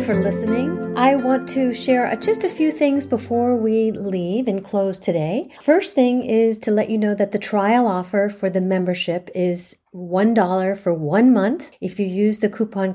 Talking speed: 190 wpm